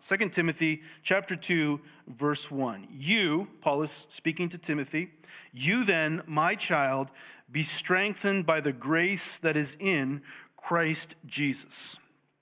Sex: male